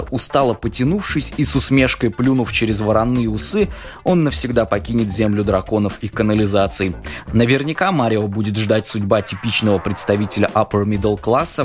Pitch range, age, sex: 100-125 Hz, 20-39, male